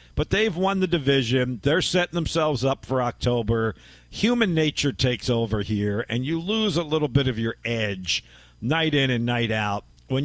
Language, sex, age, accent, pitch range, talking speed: English, male, 50-69, American, 115-155 Hz, 180 wpm